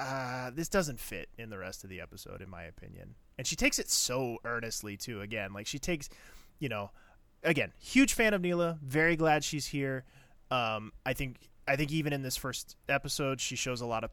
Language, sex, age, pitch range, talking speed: English, male, 20-39, 110-150 Hz, 210 wpm